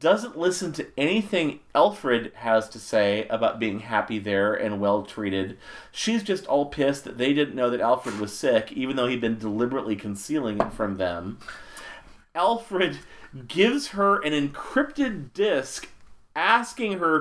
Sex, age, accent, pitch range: male, 40-59, American, 120-200 Hz